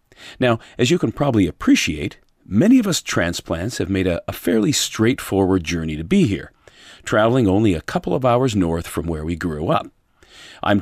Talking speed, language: 185 wpm, English